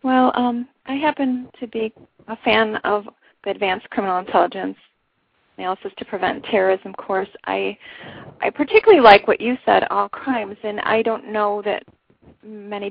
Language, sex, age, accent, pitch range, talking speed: English, female, 30-49, American, 195-240 Hz, 155 wpm